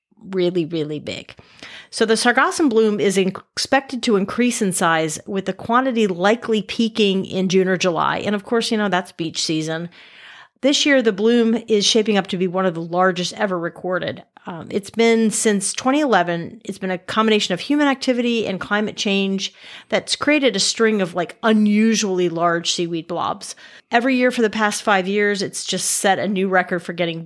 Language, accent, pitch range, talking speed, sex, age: English, American, 180-225 Hz, 190 wpm, female, 40-59